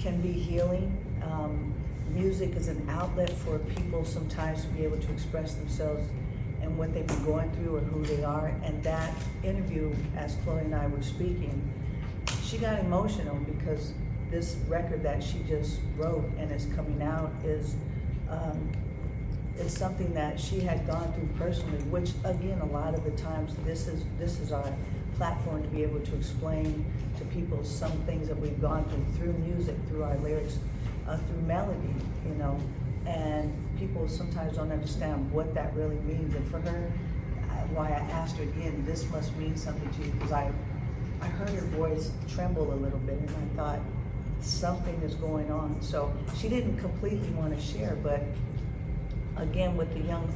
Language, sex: English, female